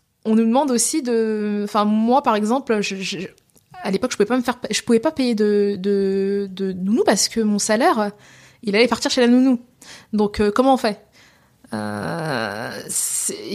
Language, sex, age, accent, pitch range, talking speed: French, female, 20-39, French, 195-240 Hz, 190 wpm